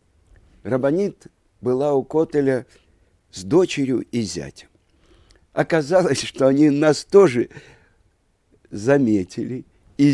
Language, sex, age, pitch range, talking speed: Russian, male, 60-79, 95-140 Hz, 90 wpm